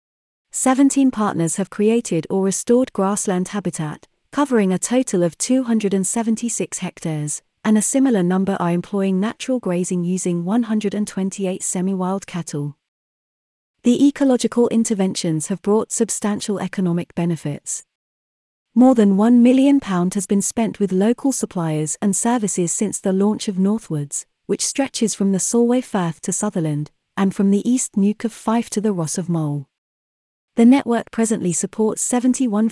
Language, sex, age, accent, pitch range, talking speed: English, female, 40-59, British, 175-225 Hz, 140 wpm